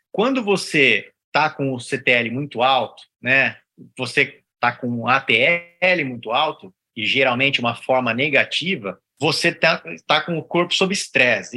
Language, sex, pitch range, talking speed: Portuguese, male, 135-190 Hz, 150 wpm